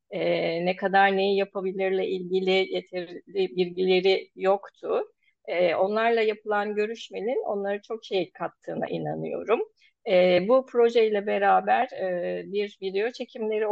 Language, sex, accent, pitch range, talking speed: Turkish, female, native, 185-230 Hz, 120 wpm